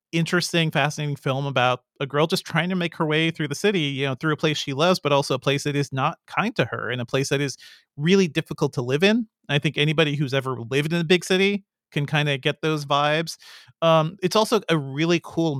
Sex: male